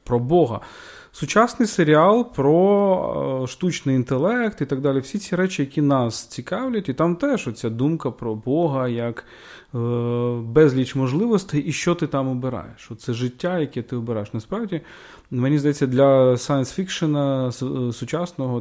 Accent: native